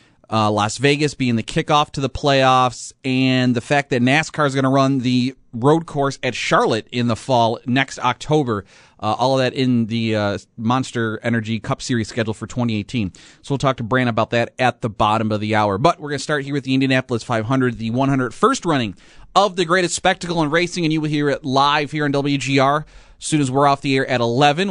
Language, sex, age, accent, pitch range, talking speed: English, male, 30-49, American, 115-140 Hz, 225 wpm